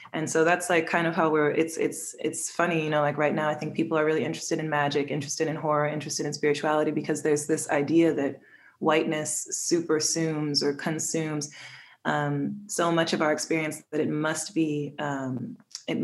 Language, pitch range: English, 150-170 Hz